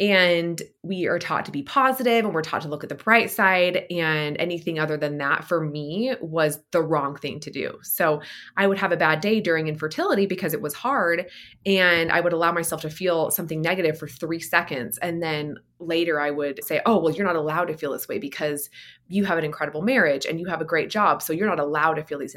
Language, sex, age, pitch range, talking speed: English, female, 20-39, 155-195 Hz, 235 wpm